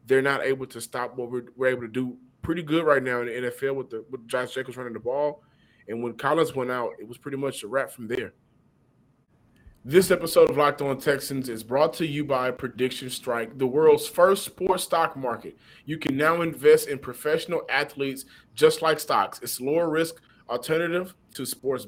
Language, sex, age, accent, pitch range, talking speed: English, male, 20-39, American, 125-160 Hz, 205 wpm